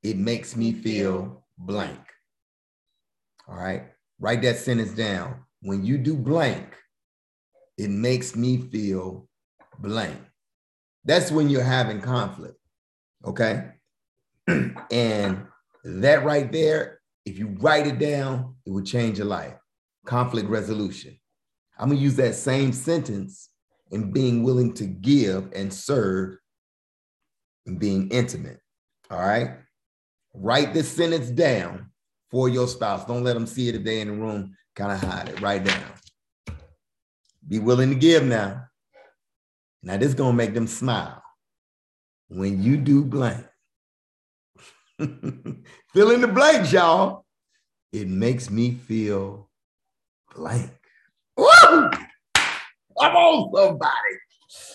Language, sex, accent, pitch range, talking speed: English, male, American, 100-145 Hz, 125 wpm